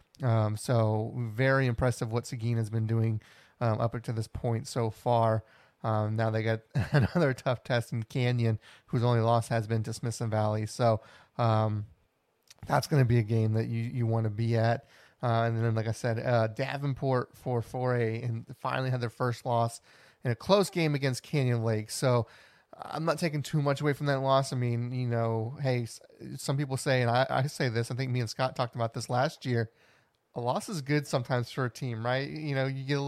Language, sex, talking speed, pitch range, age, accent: English, male, 210 wpm, 115-135 Hz, 30-49, American